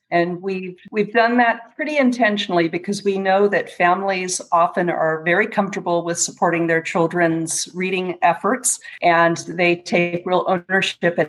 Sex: female